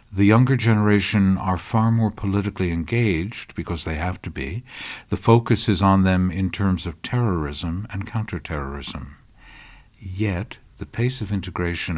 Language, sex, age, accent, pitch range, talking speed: English, male, 60-79, American, 90-110 Hz, 145 wpm